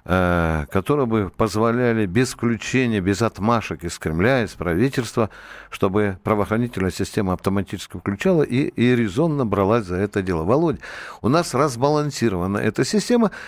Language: Russian